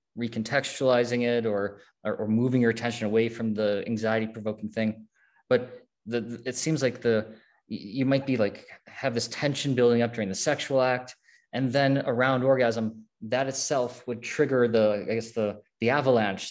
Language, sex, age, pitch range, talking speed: English, male, 20-39, 110-135 Hz, 170 wpm